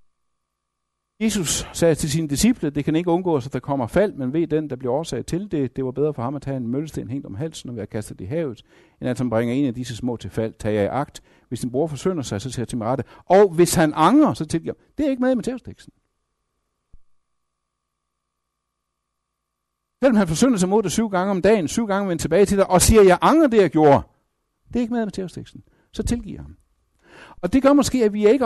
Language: Danish